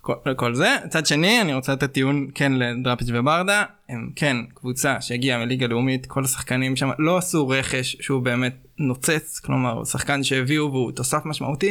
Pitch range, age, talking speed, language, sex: 135-170 Hz, 20-39, 175 wpm, Hebrew, male